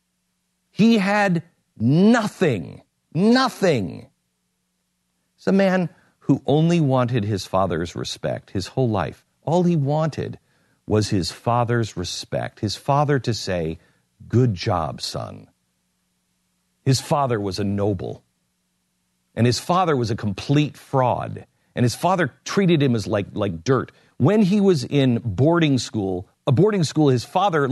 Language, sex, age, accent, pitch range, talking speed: English, male, 50-69, American, 110-175 Hz, 135 wpm